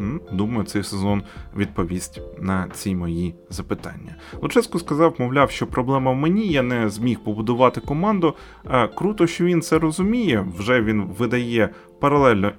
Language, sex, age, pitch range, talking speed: Ukrainian, male, 20-39, 100-145 Hz, 140 wpm